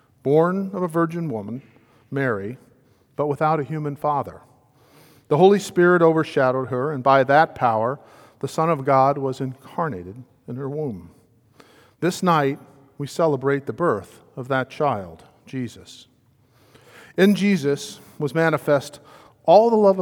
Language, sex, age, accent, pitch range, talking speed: English, male, 50-69, American, 125-160 Hz, 140 wpm